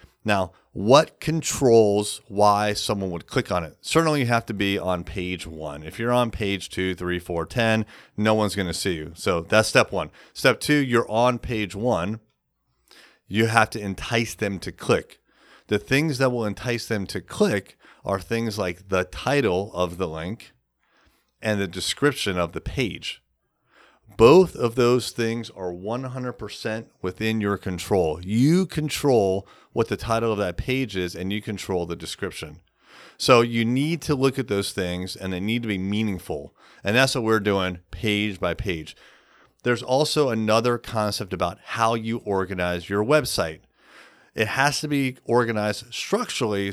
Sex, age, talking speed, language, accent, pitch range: male, 30-49, 170 wpm, English, American, 95-120 Hz